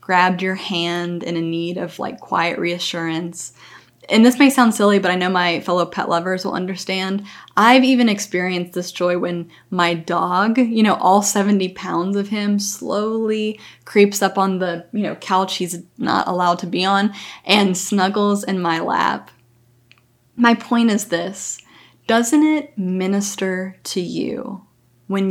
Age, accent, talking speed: 20-39, American, 160 wpm